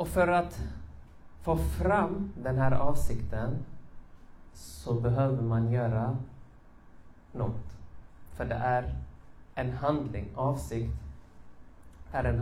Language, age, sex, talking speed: Swedish, 30-49, male, 100 wpm